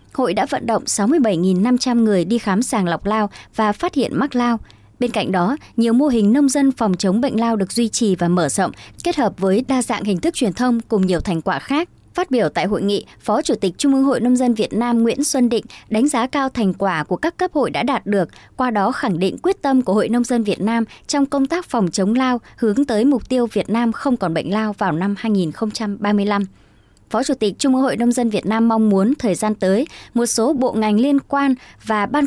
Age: 20-39